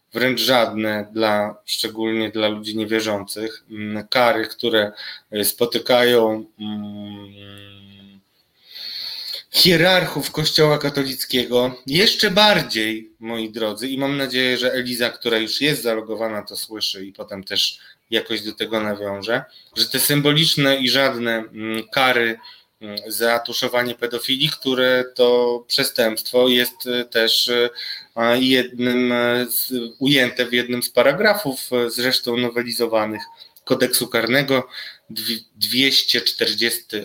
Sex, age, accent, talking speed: male, 20-39, native, 100 wpm